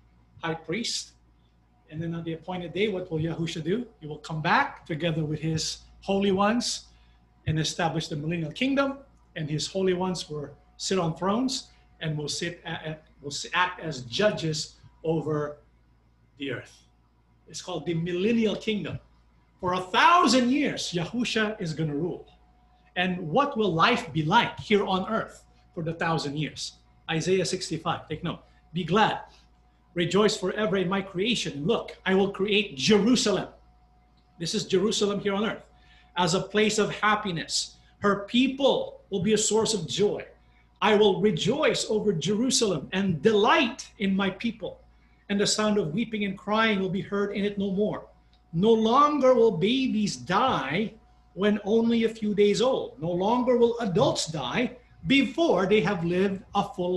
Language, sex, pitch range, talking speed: English, male, 155-215 Hz, 160 wpm